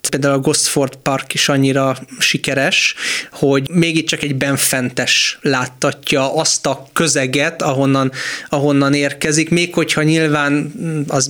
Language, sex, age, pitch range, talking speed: Hungarian, male, 20-39, 135-155 Hz, 135 wpm